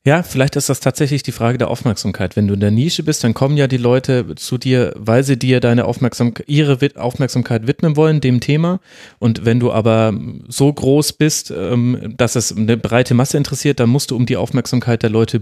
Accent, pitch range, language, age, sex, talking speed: German, 120-150 Hz, German, 30-49, male, 210 wpm